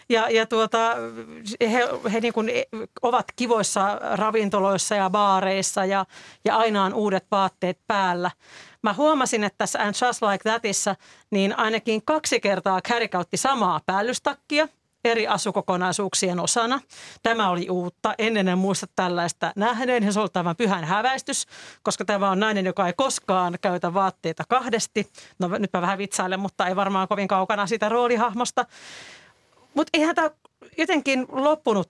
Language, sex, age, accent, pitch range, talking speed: Finnish, female, 40-59, native, 185-240 Hz, 145 wpm